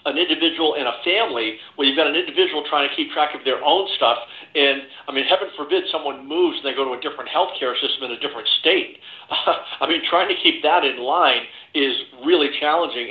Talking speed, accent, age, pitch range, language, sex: 225 wpm, American, 50-69, 140-165 Hz, English, male